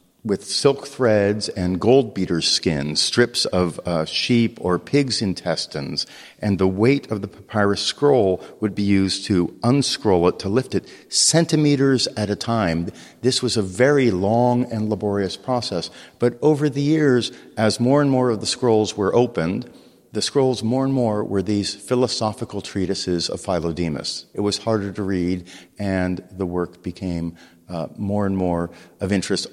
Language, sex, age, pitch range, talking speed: English, male, 50-69, 95-120 Hz, 165 wpm